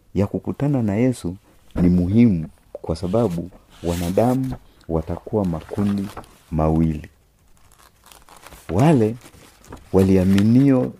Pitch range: 85-110 Hz